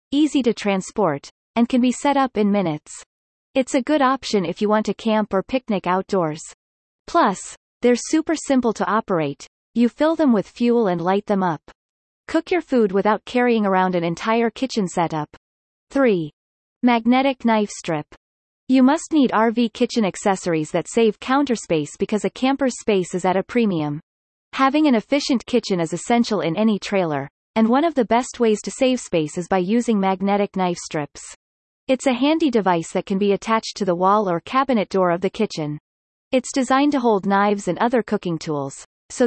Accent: American